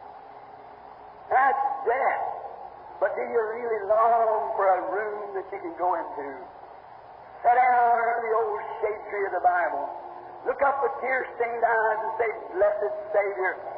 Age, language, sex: 50-69, English, male